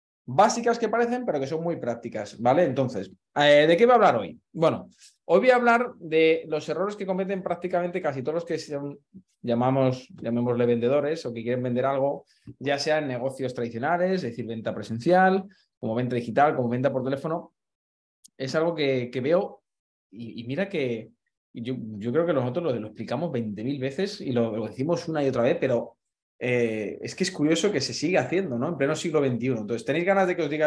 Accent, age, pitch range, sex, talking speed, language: Spanish, 20-39, 120-175 Hz, male, 205 wpm, Spanish